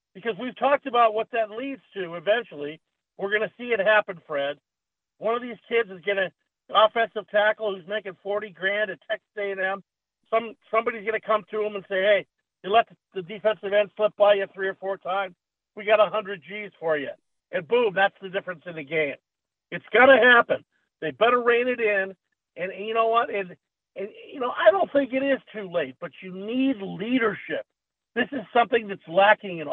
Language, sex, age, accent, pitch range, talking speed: English, male, 50-69, American, 195-235 Hz, 210 wpm